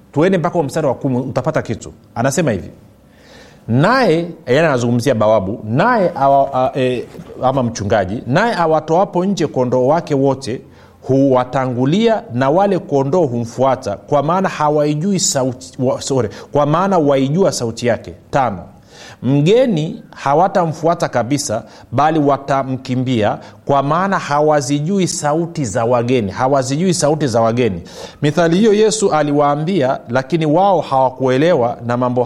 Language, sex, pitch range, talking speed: Swahili, male, 125-170 Hz, 120 wpm